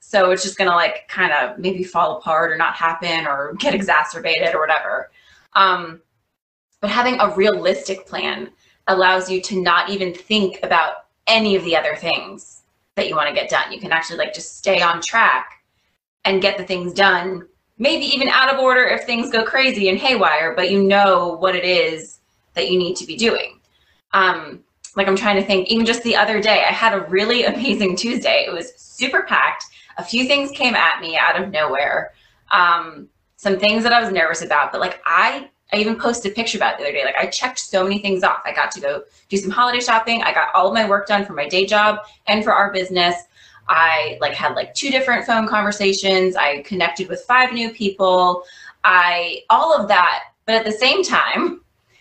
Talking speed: 210 wpm